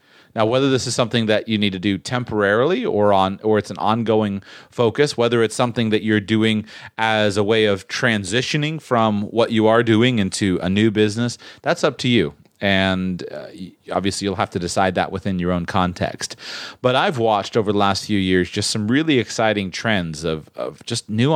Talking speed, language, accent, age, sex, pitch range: 200 wpm, English, American, 30-49, male, 95-115 Hz